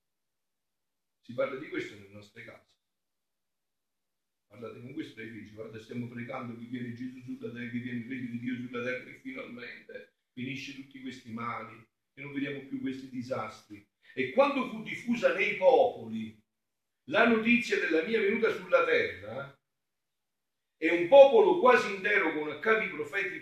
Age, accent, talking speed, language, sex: 50-69, native, 155 wpm, Italian, male